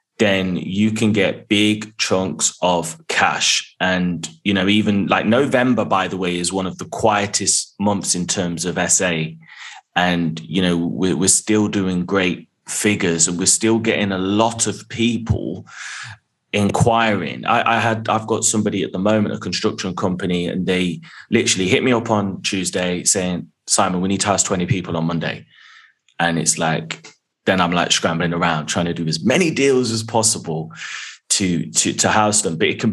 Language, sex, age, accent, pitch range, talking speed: English, male, 20-39, British, 90-110 Hz, 175 wpm